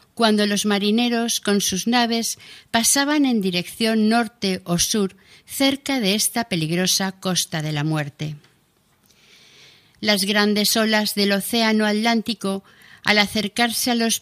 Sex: female